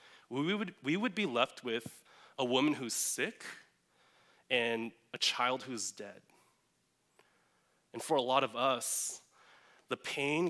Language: English